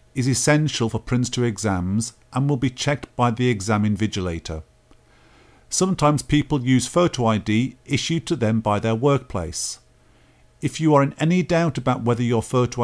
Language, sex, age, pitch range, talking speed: English, male, 50-69, 110-140 Hz, 160 wpm